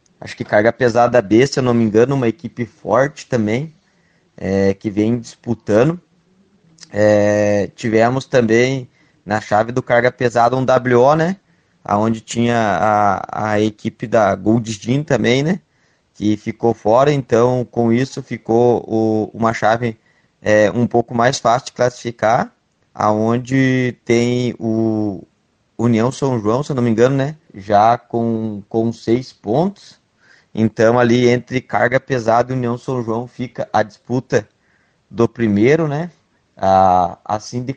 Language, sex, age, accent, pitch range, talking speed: Portuguese, male, 20-39, Brazilian, 110-135 Hz, 145 wpm